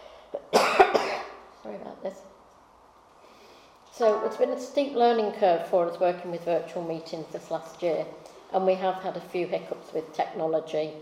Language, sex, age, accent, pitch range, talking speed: English, female, 40-59, British, 165-185 Hz, 150 wpm